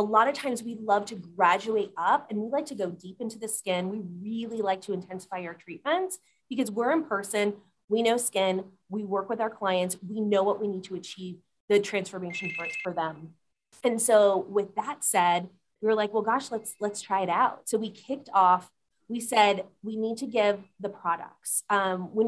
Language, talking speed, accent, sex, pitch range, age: English, 205 wpm, American, female, 185-230 Hz, 30-49